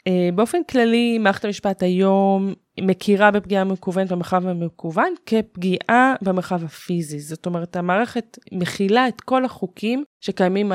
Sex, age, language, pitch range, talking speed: female, 20-39, Hebrew, 170-215 Hz, 115 wpm